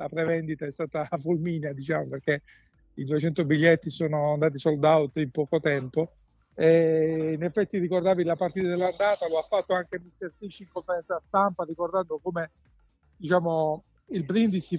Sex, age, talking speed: male, 50-69, 160 wpm